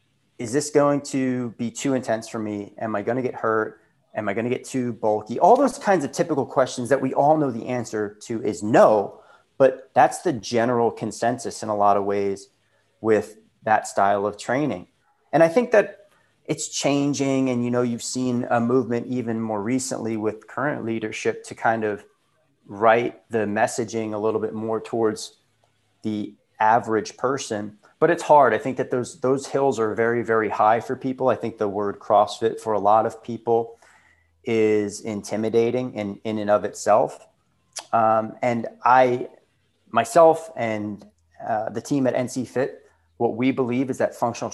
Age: 30-49